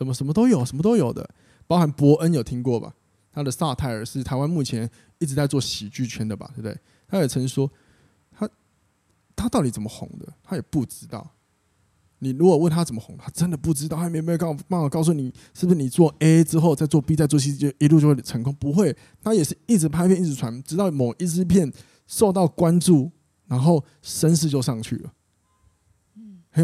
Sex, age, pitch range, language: male, 20-39, 120-160 Hz, Chinese